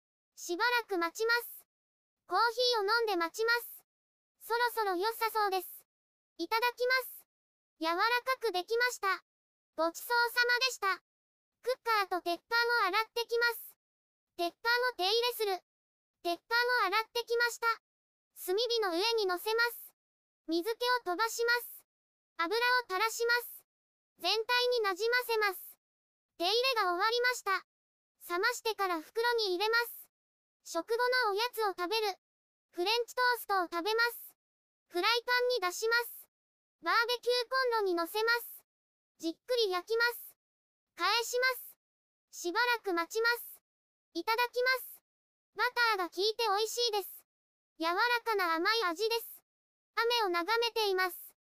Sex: male